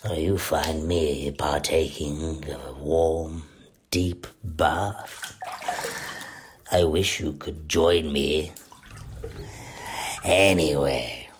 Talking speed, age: 90 wpm, 50-69